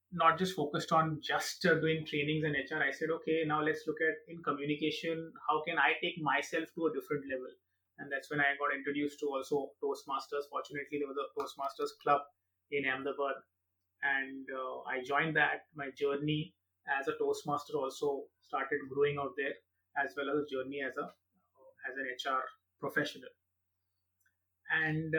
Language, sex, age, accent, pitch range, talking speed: English, male, 30-49, Indian, 140-160 Hz, 170 wpm